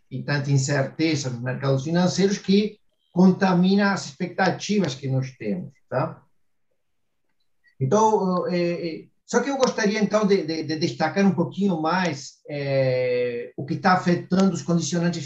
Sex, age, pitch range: male, 50-69, 140-190 Hz